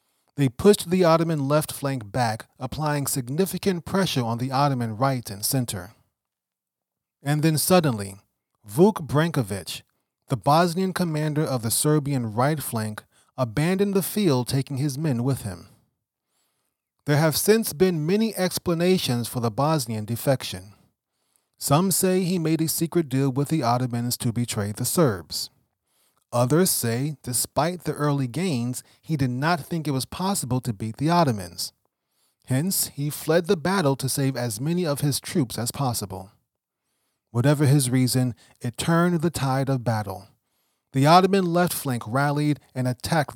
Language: English